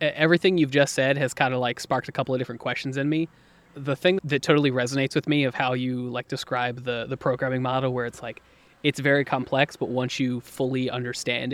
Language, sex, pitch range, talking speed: English, male, 125-145 Hz, 225 wpm